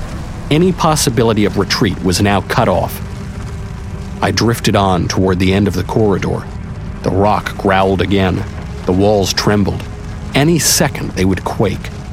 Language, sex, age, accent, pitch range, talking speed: English, male, 50-69, American, 95-140 Hz, 145 wpm